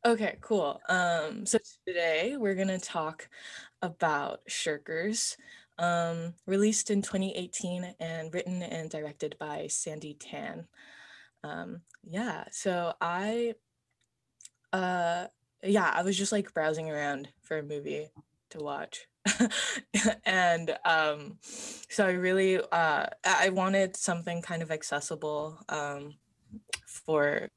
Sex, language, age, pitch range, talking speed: female, English, 20-39, 155-200 Hz, 115 wpm